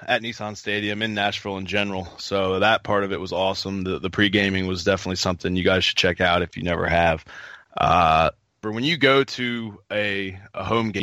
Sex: male